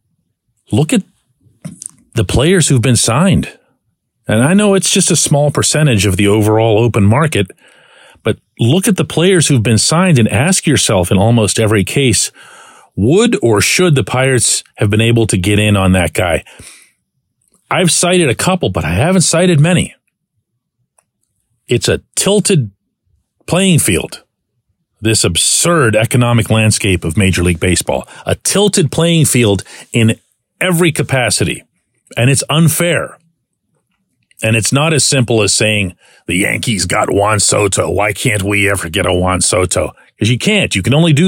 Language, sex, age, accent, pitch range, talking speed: English, male, 40-59, American, 105-155 Hz, 155 wpm